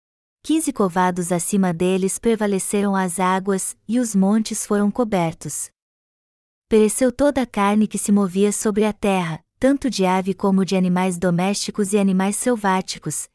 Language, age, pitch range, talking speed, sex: Portuguese, 20-39, 190-230 Hz, 145 wpm, female